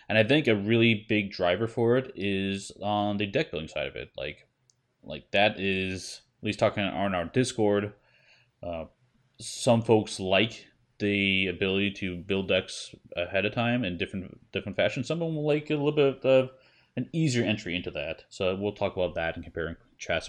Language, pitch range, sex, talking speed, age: English, 90-125 Hz, male, 190 wpm, 20-39